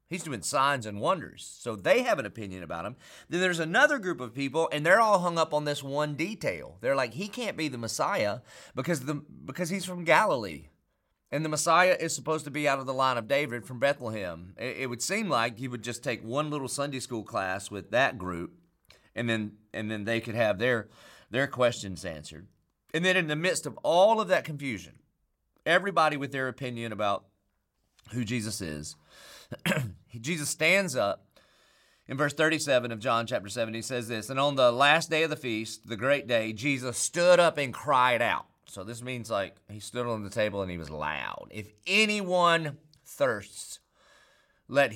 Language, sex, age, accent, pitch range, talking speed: English, male, 30-49, American, 110-155 Hz, 195 wpm